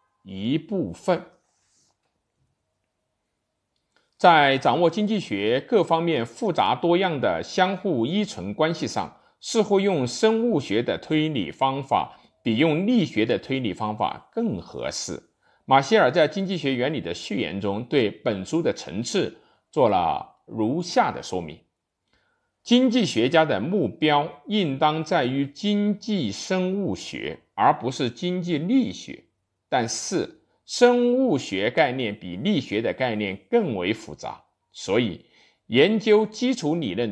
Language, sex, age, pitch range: Chinese, male, 50-69, 135-220 Hz